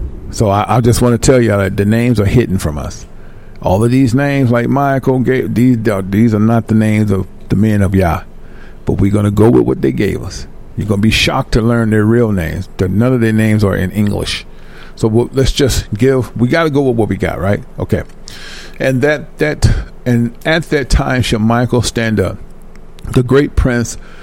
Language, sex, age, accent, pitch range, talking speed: English, male, 50-69, American, 105-130 Hz, 220 wpm